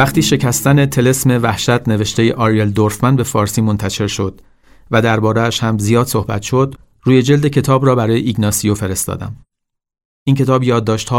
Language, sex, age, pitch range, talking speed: Persian, male, 40-59, 105-125 Hz, 155 wpm